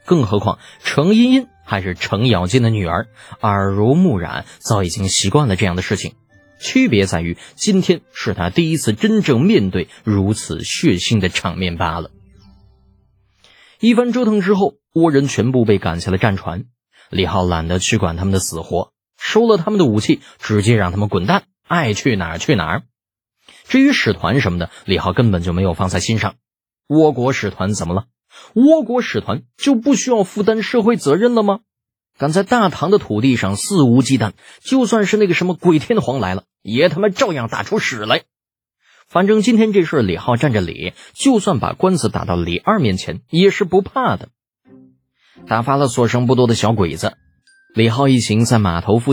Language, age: Chinese, 20-39